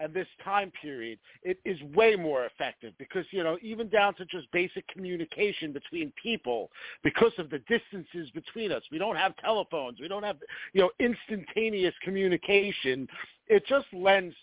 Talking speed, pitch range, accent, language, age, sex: 165 wpm, 160-215 Hz, American, English, 50-69, male